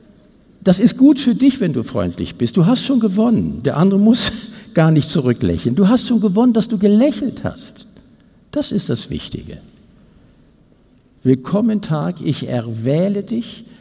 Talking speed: 155 wpm